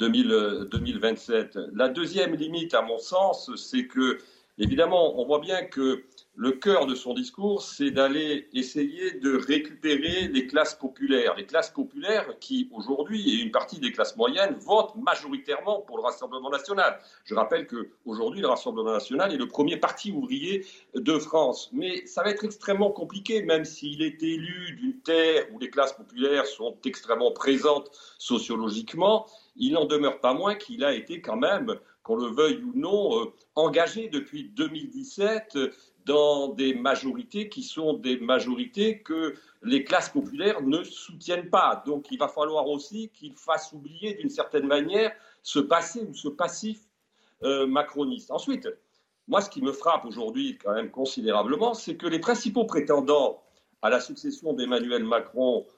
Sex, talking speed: male, 155 wpm